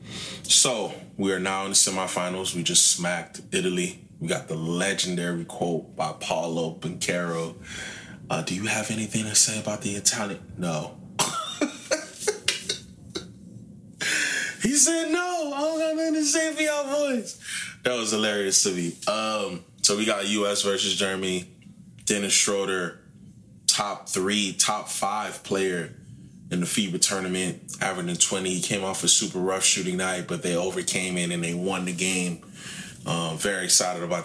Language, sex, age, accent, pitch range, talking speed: English, male, 20-39, American, 90-105 Hz, 150 wpm